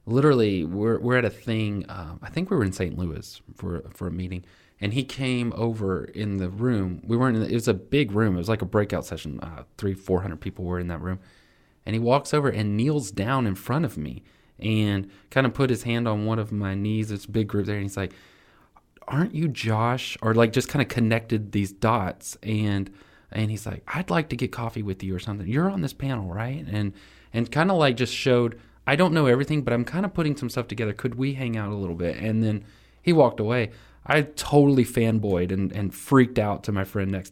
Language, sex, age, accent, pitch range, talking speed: English, male, 30-49, American, 95-120 Hz, 235 wpm